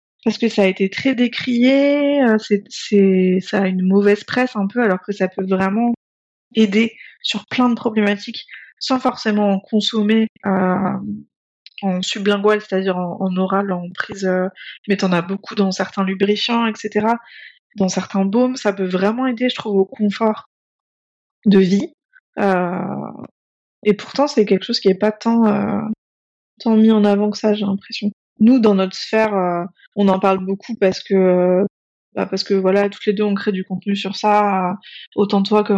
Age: 20-39